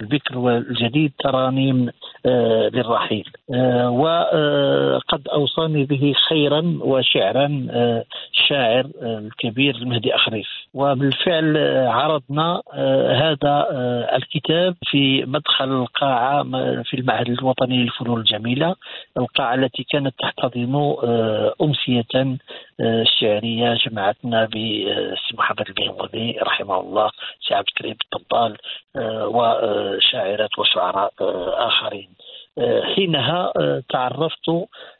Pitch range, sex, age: 120-150 Hz, male, 50-69